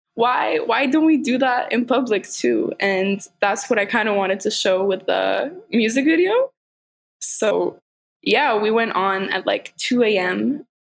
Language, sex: English, female